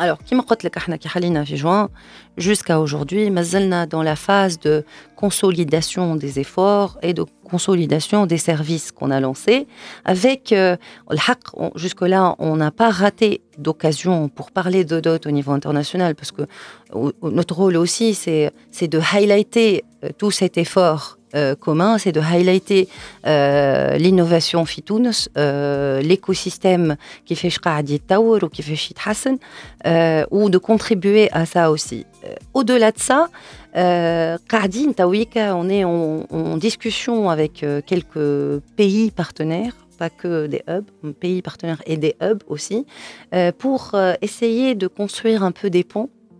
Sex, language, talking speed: female, Arabic, 135 wpm